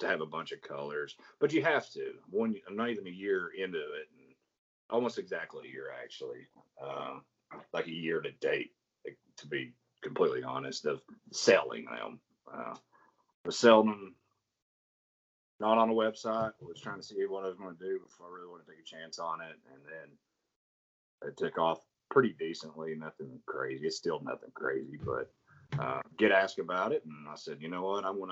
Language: English